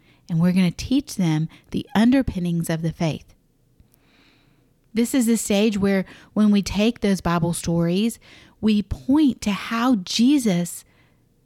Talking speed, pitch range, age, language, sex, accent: 140 wpm, 165-230 Hz, 40-59, English, female, American